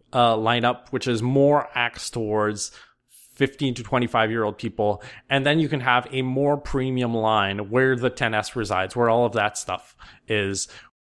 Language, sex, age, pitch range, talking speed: English, male, 20-39, 110-140 Hz, 175 wpm